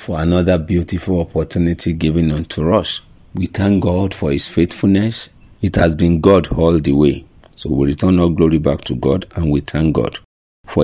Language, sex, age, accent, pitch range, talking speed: English, male, 50-69, Nigerian, 80-95 Hz, 185 wpm